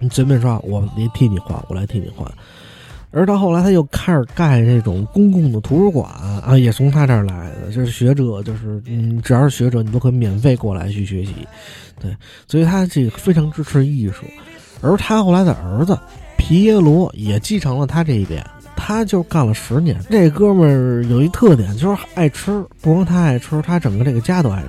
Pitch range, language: 110-155 Hz, Chinese